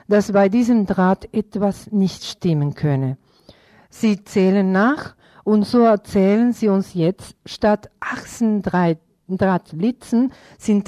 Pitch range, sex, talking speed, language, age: 165-215 Hz, female, 115 wpm, German, 50-69